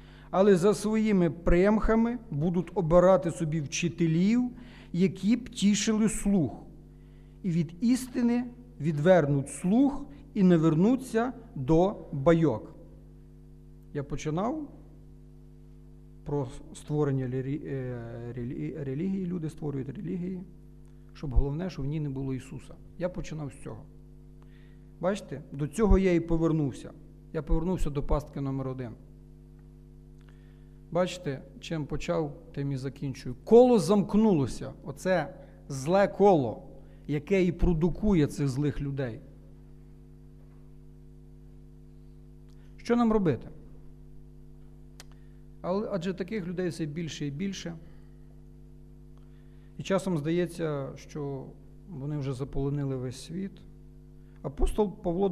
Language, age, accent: Ukrainian, 50-69, native